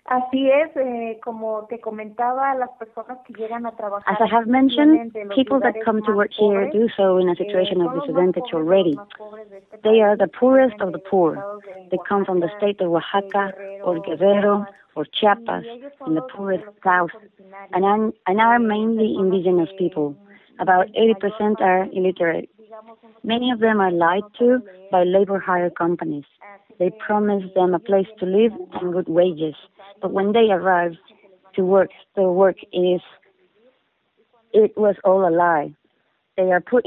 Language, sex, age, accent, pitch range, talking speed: English, female, 30-49, Mexican, 185-220 Hz, 140 wpm